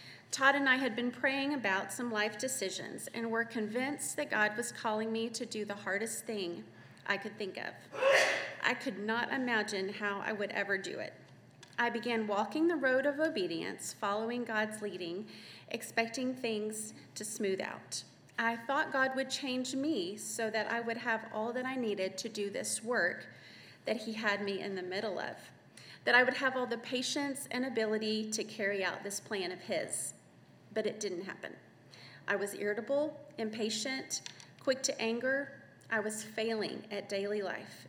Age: 30-49